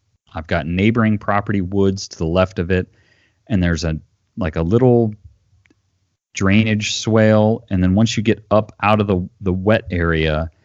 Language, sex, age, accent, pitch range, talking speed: English, male, 30-49, American, 85-105 Hz, 170 wpm